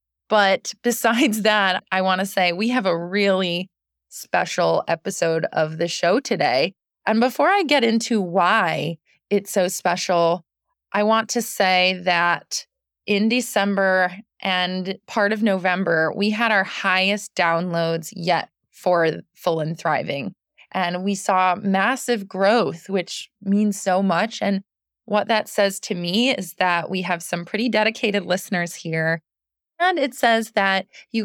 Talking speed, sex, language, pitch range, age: 145 wpm, female, English, 175-220 Hz, 20-39